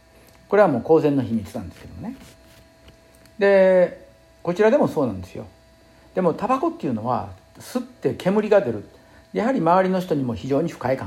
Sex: male